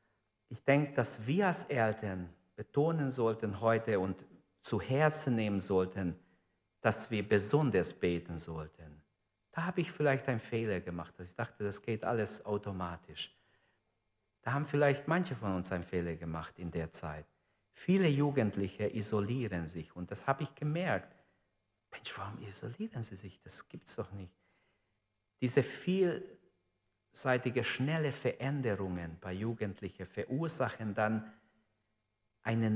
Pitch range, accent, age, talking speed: 95-120 Hz, German, 50-69, 130 wpm